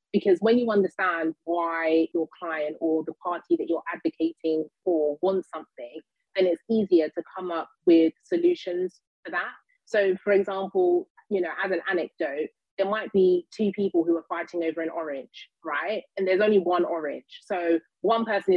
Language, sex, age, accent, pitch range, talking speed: English, female, 30-49, British, 170-225 Hz, 175 wpm